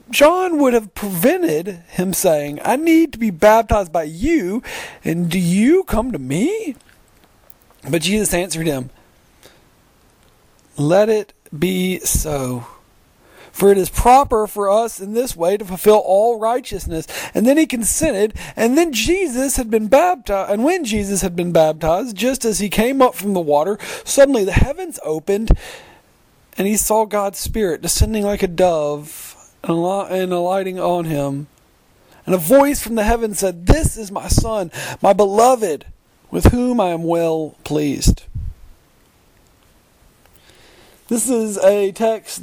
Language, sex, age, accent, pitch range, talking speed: English, male, 40-59, American, 175-230 Hz, 145 wpm